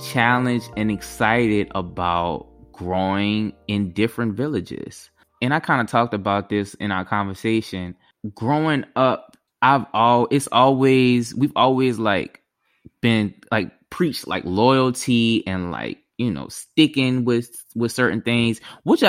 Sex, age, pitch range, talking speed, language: male, 20-39, 105-135 Hz, 130 wpm, English